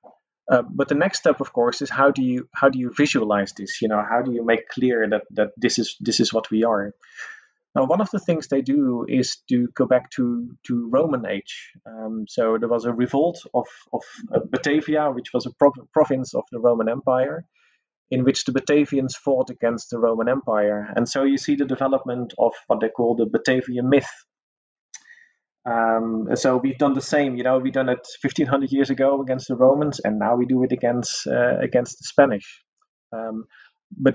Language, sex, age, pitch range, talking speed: English, male, 30-49, 120-140 Hz, 210 wpm